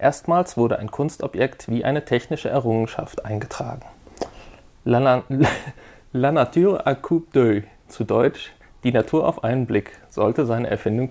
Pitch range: 110-140 Hz